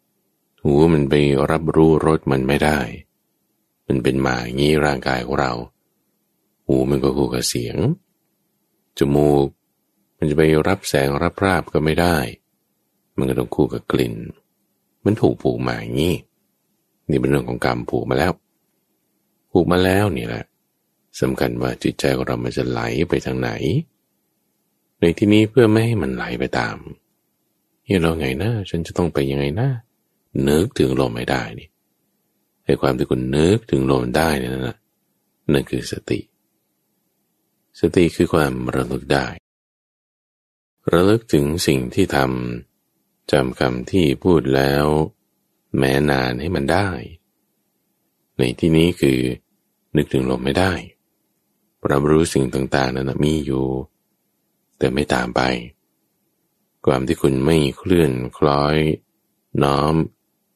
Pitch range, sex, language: 65-80 Hz, male, English